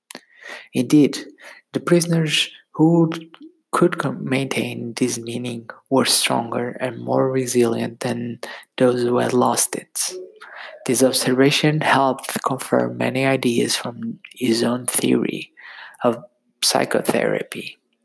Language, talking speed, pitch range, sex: English, 105 wpm, 125-150 Hz, male